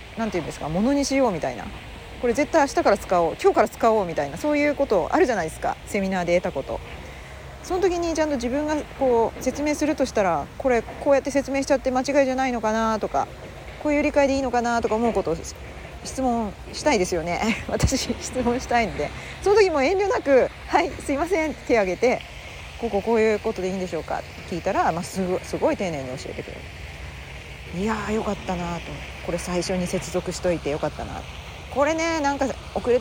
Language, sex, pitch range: Japanese, female, 185-280 Hz